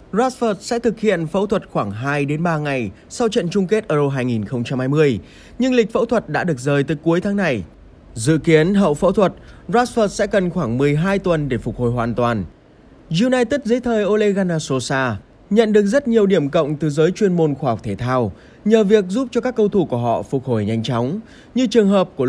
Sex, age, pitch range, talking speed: male, 20-39, 130-210 Hz, 205 wpm